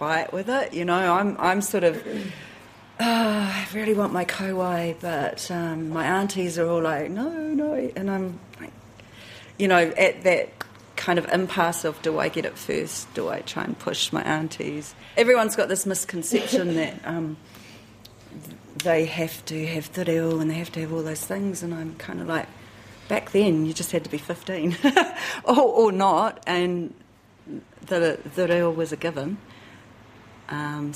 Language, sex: English, female